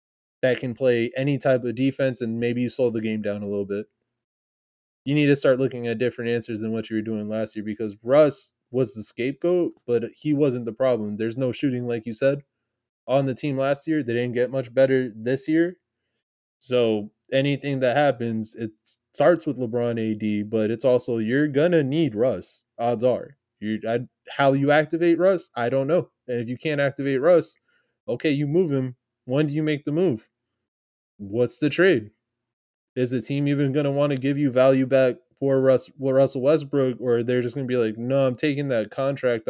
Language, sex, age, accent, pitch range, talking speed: English, male, 20-39, American, 115-140 Hz, 200 wpm